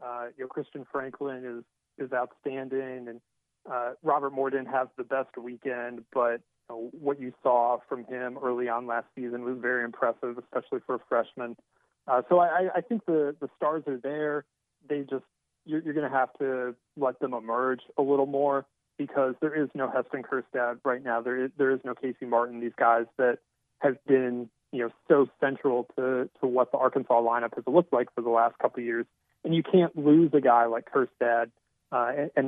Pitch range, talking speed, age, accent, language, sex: 120-140 Hz, 200 wpm, 30-49, American, English, male